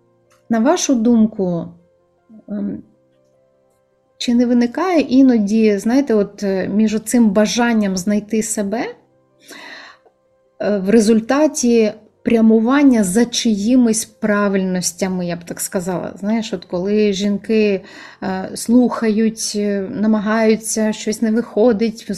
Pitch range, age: 185-225 Hz, 30-49